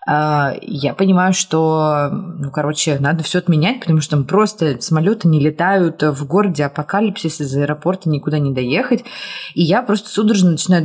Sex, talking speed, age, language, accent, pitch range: female, 155 wpm, 20-39, Russian, native, 150-190 Hz